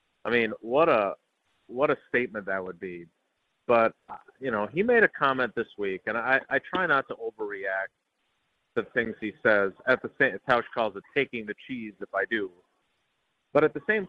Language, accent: English, American